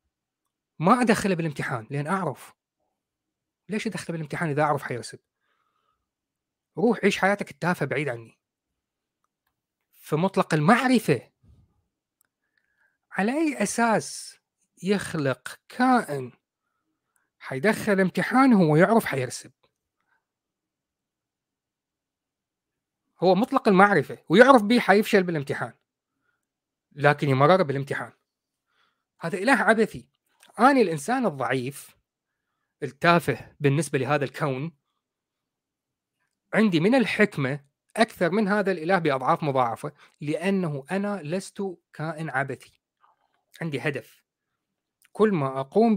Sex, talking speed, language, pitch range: male, 90 wpm, Arabic, 140-205 Hz